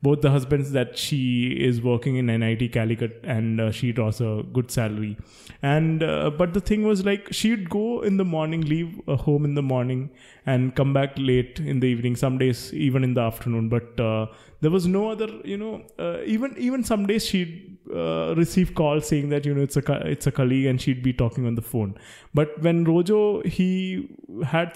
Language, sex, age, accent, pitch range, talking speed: English, male, 20-39, Indian, 120-160 Hz, 205 wpm